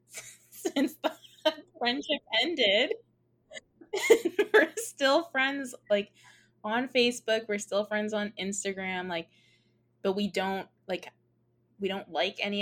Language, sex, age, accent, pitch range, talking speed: English, female, 20-39, American, 165-215 Hz, 115 wpm